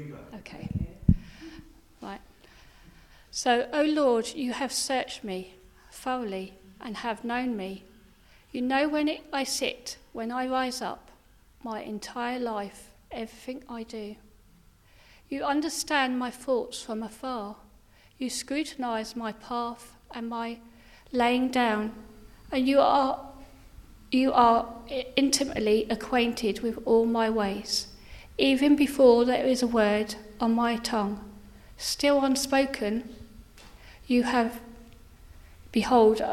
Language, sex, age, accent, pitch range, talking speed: English, female, 40-59, British, 215-255 Hz, 115 wpm